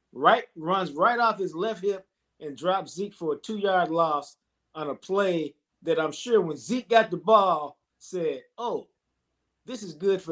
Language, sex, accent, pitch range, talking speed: English, male, American, 140-185 Hz, 180 wpm